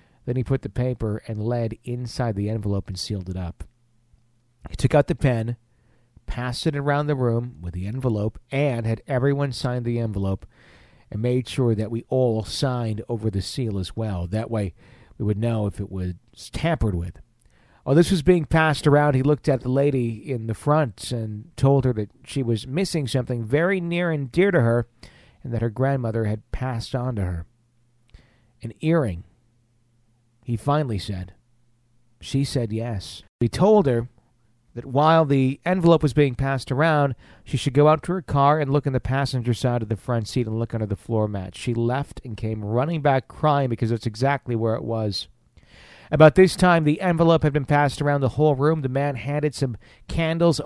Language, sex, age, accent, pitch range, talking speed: English, male, 40-59, American, 115-140 Hz, 195 wpm